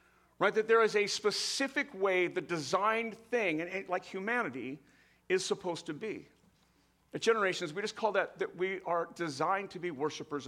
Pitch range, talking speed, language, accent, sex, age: 185-240 Hz, 165 wpm, English, American, male, 50-69